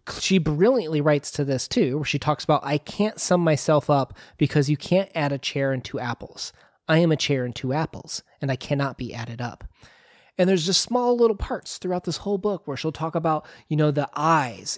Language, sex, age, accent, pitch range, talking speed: English, male, 30-49, American, 140-175 Hz, 225 wpm